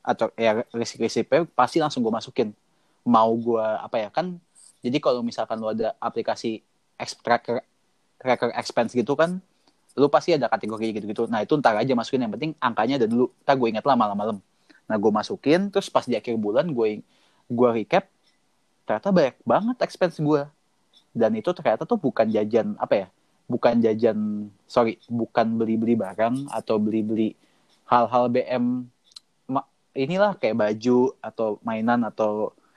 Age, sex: 20-39, male